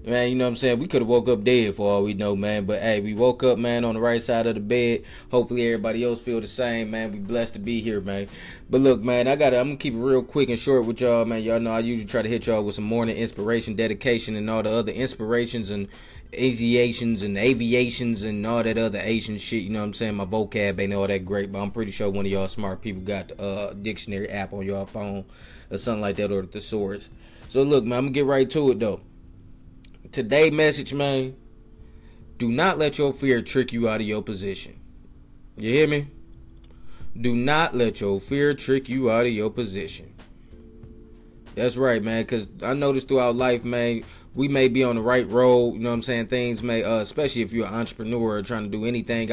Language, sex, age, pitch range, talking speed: English, male, 20-39, 105-125 Hz, 240 wpm